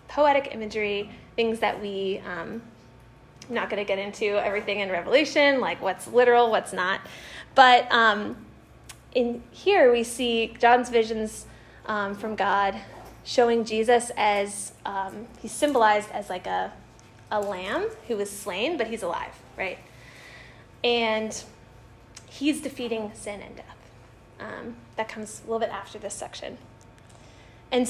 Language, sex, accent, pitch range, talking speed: English, female, American, 200-250 Hz, 140 wpm